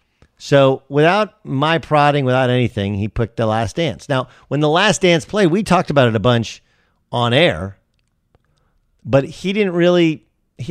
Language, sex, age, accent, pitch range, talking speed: English, male, 40-59, American, 105-150 Hz, 170 wpm